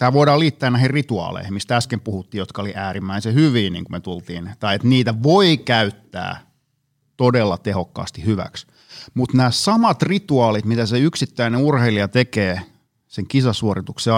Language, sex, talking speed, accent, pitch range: Finnish, male, 150 wpm, native, 105-135 Hz